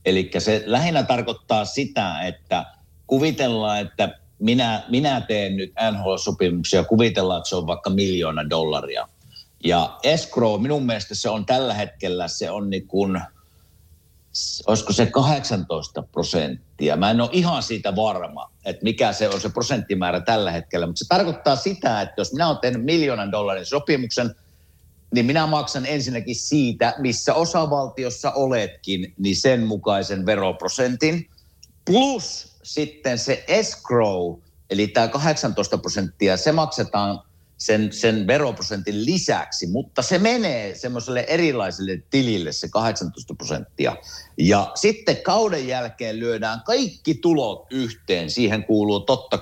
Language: Finnish